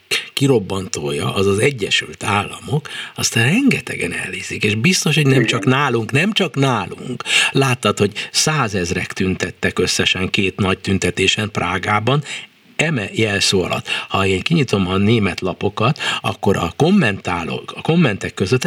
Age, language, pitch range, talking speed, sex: 60-79, Hungarian, 95-135 Hz, 130 wpm, male